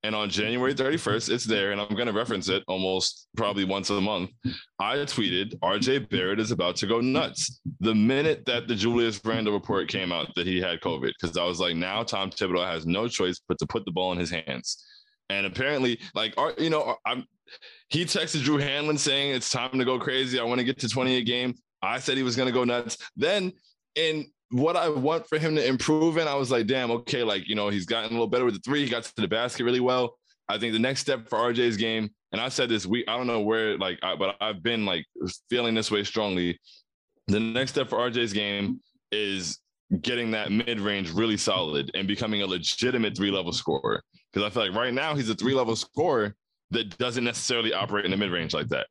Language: English